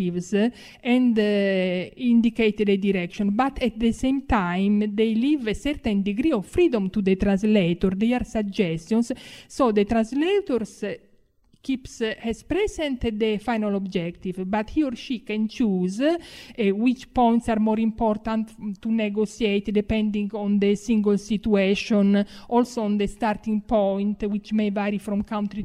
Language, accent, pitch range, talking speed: Polish, Italian, 200-245 Hz, 145 wpm